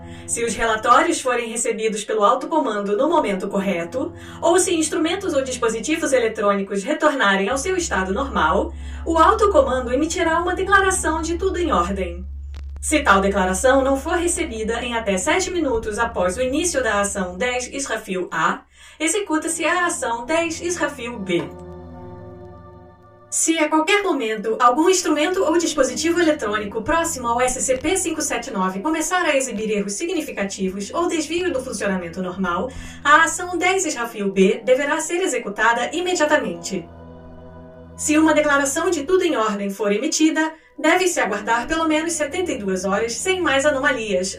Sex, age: female, 20-39